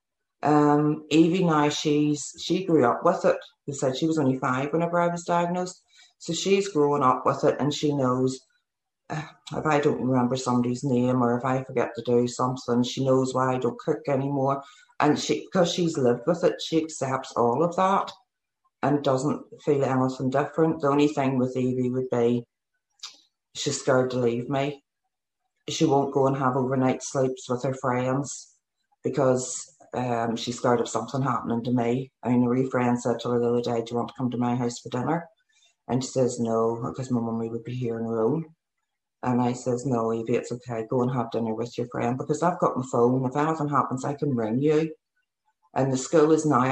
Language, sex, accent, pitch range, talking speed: English, female, British, 120-150 Hz, 210 wpm